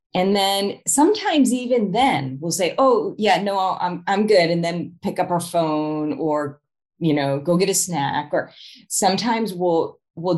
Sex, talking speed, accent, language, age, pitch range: female, 175 wpm, American, English, 30-49, 145-195 Hz